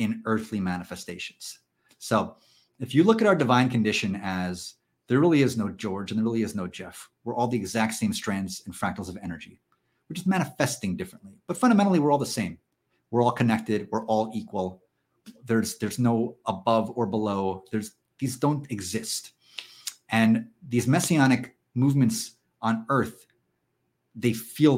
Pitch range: 95-125 Hz